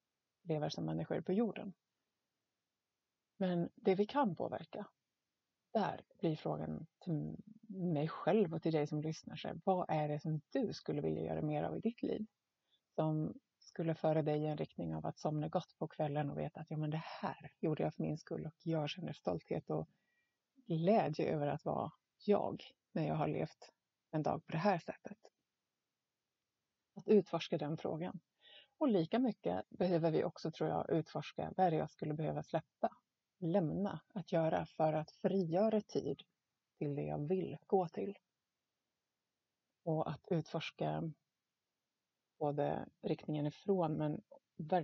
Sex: female